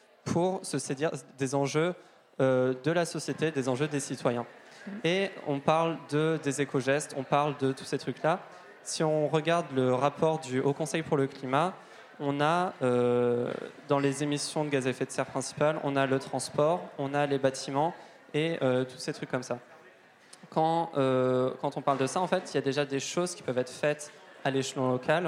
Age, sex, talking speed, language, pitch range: 20-39, male, 205 wpm, French, 135-160 Hz